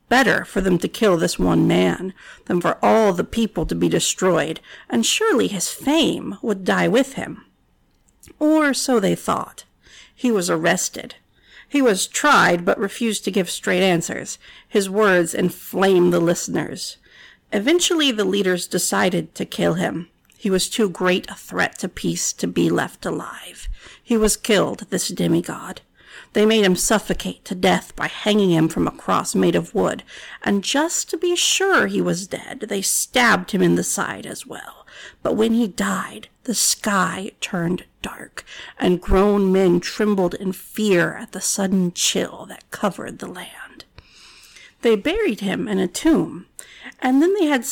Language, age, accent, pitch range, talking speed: English, 50-69, American, 185-270 Hz, 165 wpm